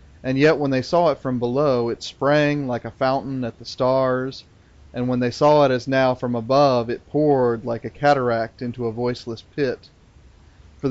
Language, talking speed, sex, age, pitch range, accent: English, 195 wpm, male, 30-49, 115-135 Hz, American